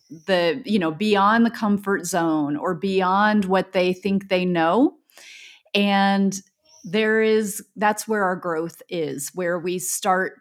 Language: English